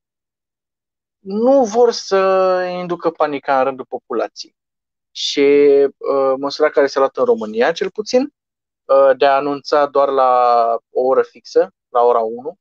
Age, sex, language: 20-39, male, Romanian